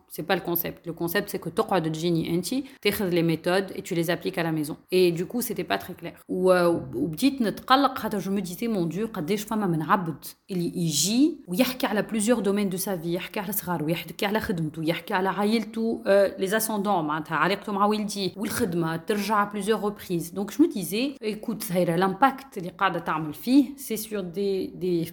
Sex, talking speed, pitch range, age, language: female, 210 wpm, 165-220 Hz, 30-49, French